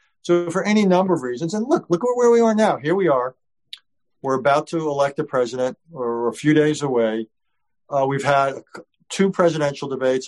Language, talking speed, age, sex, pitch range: English, 200 wpm, 50-69, male, 135-160 Hz